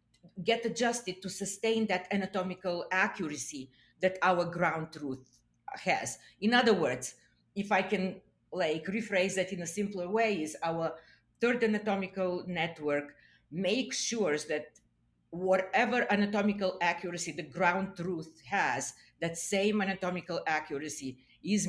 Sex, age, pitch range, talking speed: female, 50-69, 150-190 Hz, 125 wpm